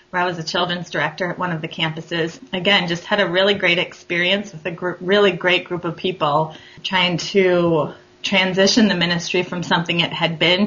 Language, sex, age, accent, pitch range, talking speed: English, female, 20-39, American, 165-195 Hz, 190 wpm